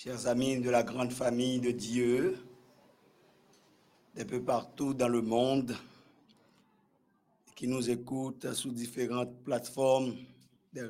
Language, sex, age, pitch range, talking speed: French, male, 50-69, 125-145 Hz, 115 wpm